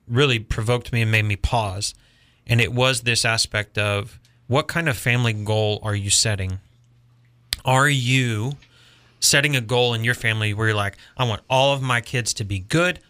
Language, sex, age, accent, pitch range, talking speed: English, male, 30-49, American, 110-130 Hz, 190 wpm